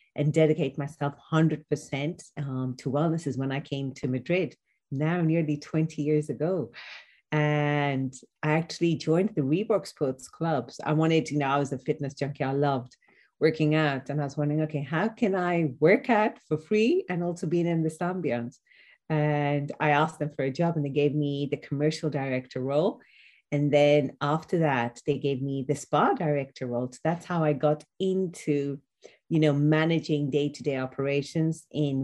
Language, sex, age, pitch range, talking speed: English, female, 40-59, 140-160 Hz, 180 wpm